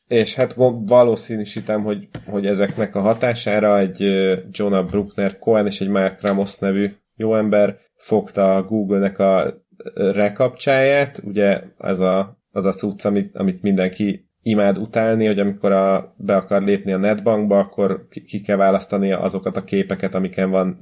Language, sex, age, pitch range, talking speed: Hungarian, male, 30-49, 100-105 Hz, 155 wpm